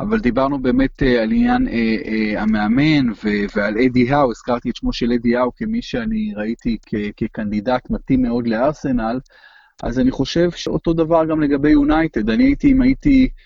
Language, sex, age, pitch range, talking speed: Hebrew, male, 30-49, 120-180 Hz, 175 wpm